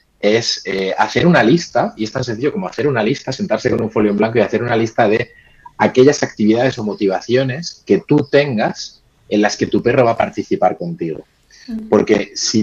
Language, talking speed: Spanish, 200 wpm